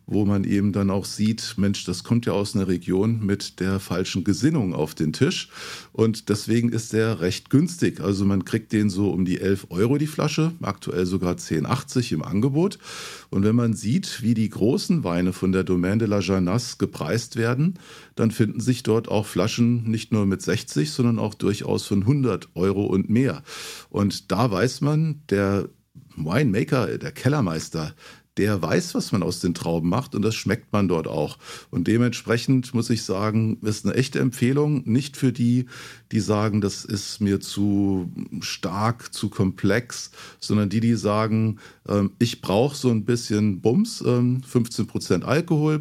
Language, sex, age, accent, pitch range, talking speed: German, male, 50-69, German, 100-125 Hz, 170 wpm